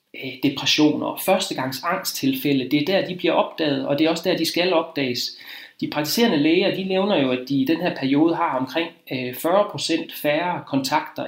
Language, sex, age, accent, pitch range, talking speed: Danish, male, 30-49, native, 140-215 Hz, 175 wpm